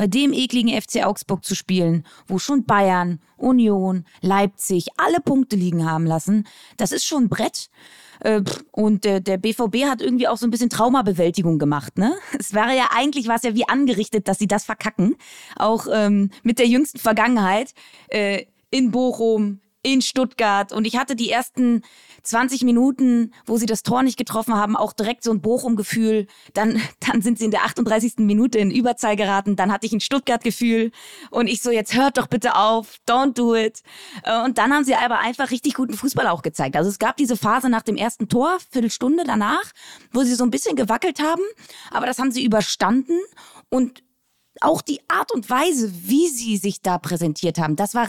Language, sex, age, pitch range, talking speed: German, female, 20-39, 205-255 Hz, 185 wpm